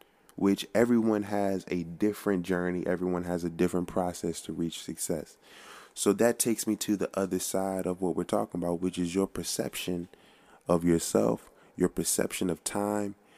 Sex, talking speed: male, 165 wpm